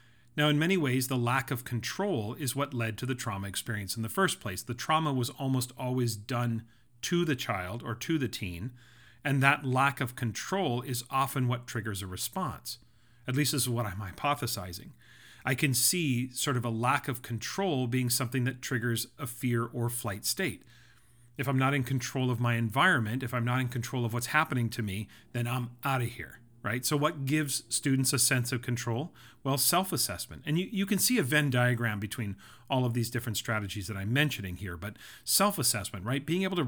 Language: English